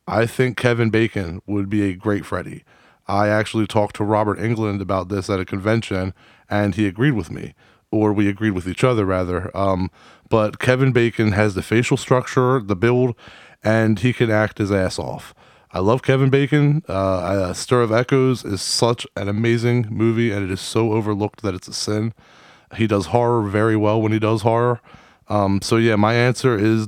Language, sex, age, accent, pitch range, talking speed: English, male, 20-39, American, 100-115 Hz, 195 wpm